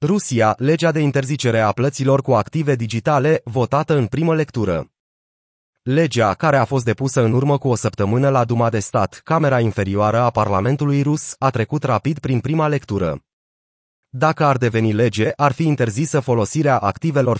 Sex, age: male, 30-49